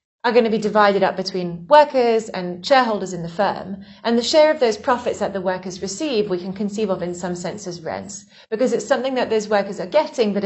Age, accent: 30-49, British